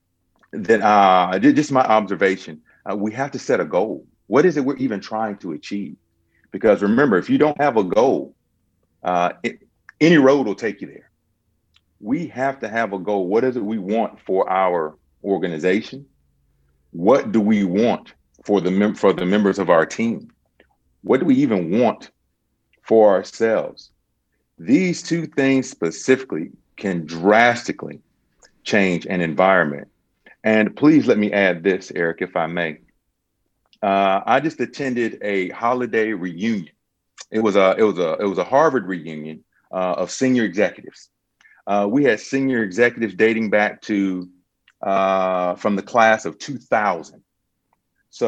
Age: 40-59